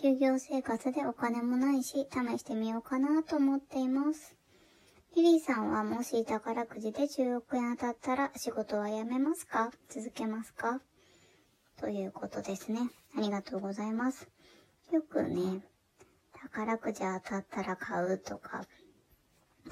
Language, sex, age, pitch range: Japanese, male, 20-39, 215-285 Hz